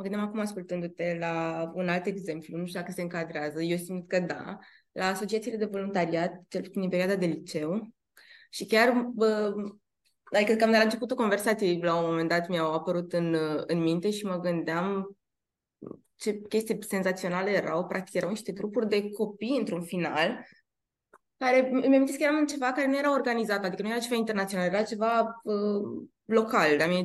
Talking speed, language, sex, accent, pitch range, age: 175 wpm, Romanian, female, native, 185-235 Hz, 20-39